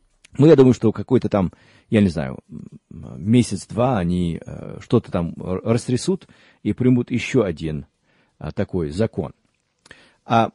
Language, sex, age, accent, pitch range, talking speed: Russian, male, 40-59, native, 100-130 Hz, 120 wpm